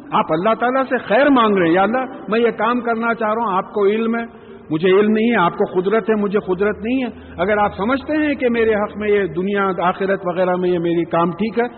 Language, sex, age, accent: English, male, 50-69, Indian